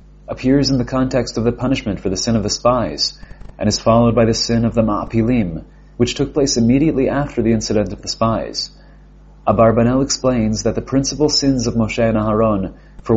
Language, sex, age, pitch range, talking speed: English, male, 30-49, 110-125 Hz, 195 wpm